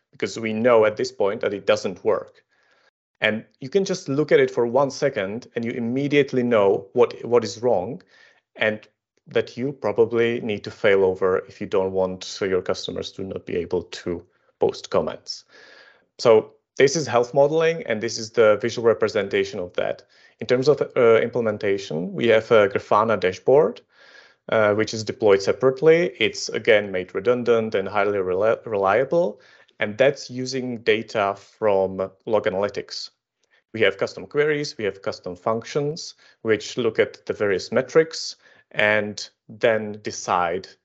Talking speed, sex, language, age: 160 wpm, male, English, 30-49